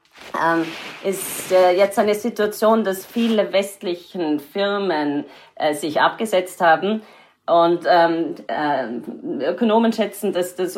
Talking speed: 120 wpm